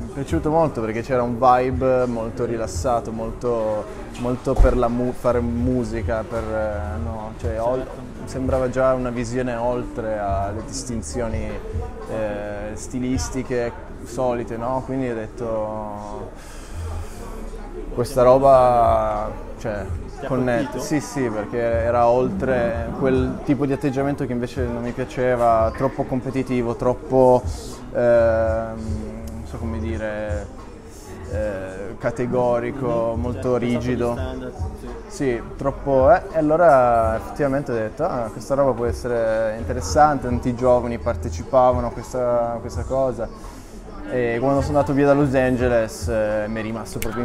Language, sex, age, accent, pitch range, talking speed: Italian, male, 20-39, native, 110-125 Hz, 125 wpm